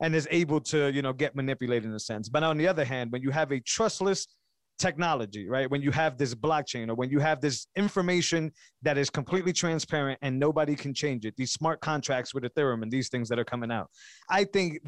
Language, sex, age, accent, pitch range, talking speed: English, male, 20-39, American, 130-165 Hz, 230 wpm